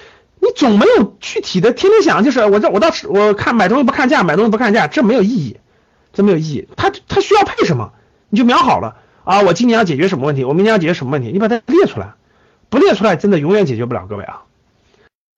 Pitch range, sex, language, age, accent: 190-285 Hz, male, Chinese, 50-69, native